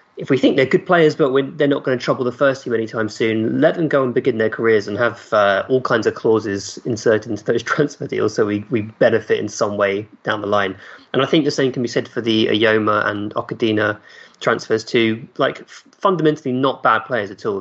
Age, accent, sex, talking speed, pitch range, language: 20-39, British, male, 230 wpm, 110-140 Hz, English